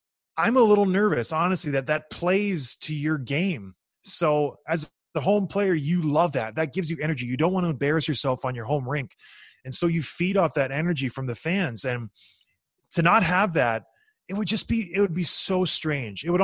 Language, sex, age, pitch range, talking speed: English, male, 20-39, 140-185 Hz, 215 wpm